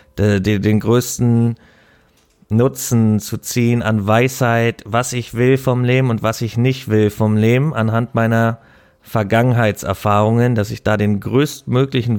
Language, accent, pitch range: German, German, 110-120 Hz